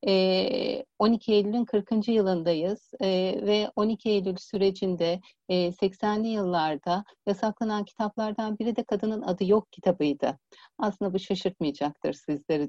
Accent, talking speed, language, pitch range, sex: native, 105 wpm, Turkish, 175-215 Hz, female